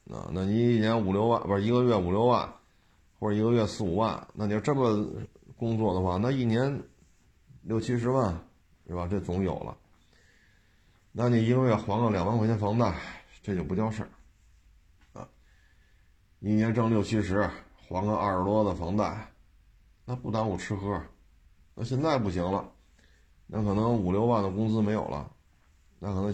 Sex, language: male, Chinese